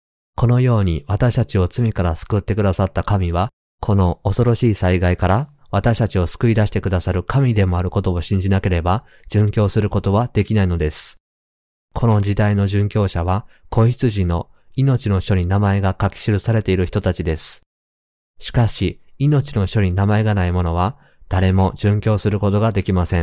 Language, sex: Japanese, male